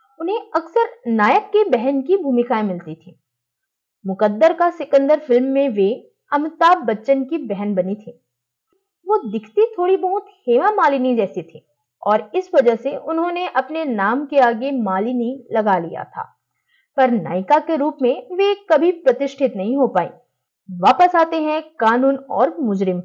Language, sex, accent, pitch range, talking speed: Hindi, female, native, 225-320 Hz, 140 wpm